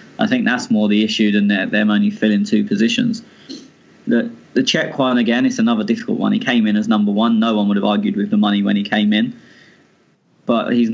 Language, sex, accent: English, male, British